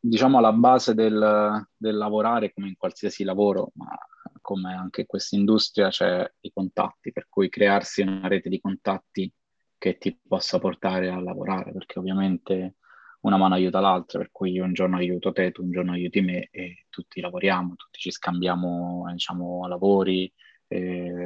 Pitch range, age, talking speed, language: 90-100 Hz, 20-39, 170 wpm, Italian